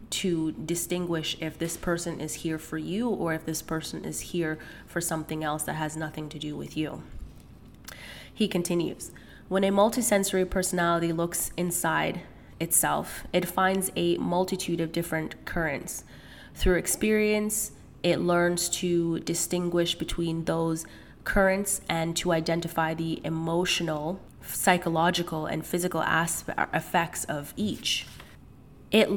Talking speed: 130 wpm